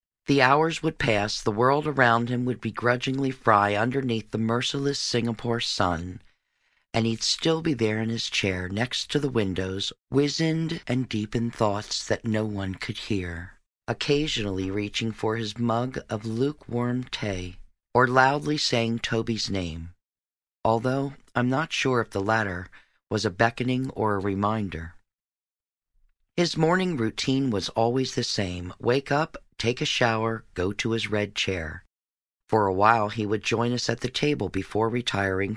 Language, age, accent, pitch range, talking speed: English, 40-59, American, 100-130 Hz, 155 wpm